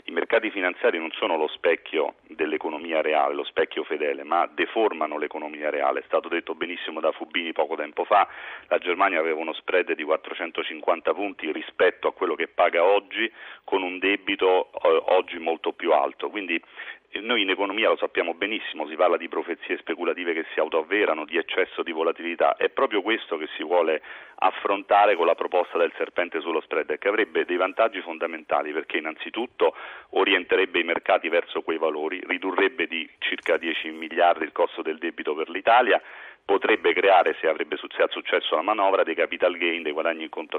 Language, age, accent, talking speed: Italian, 40-59, native, 175 wpm